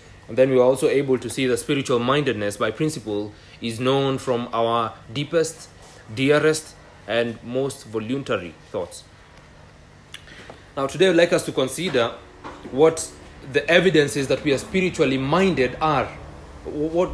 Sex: male